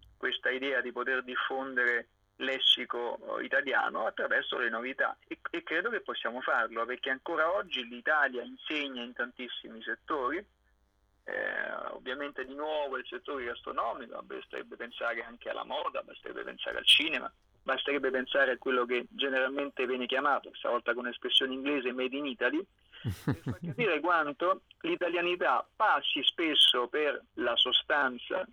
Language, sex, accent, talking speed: Italian, male, native, 135 wpm